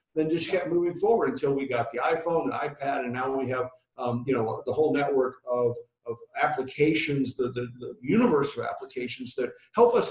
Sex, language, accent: male, English, American